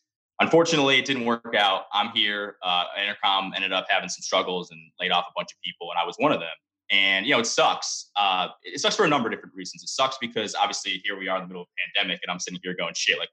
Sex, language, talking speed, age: male, English, 275 wpm, 20-39